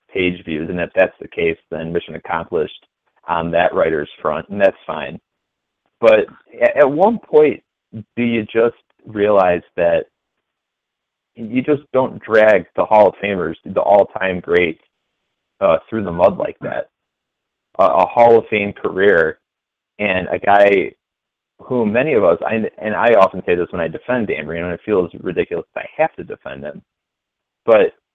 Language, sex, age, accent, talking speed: English, male, 30-49, American, 165 wpm